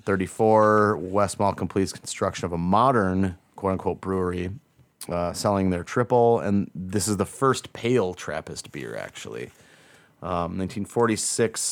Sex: male